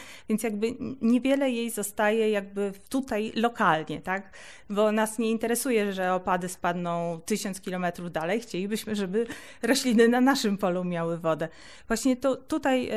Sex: female